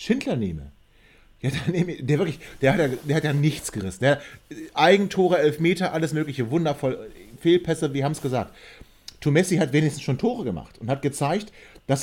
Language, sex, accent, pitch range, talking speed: German, male, German, 130-165 Hz, 180 wpm